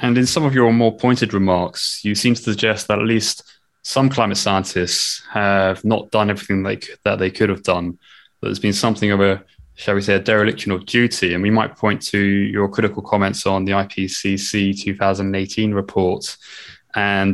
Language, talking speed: English, 185 wpm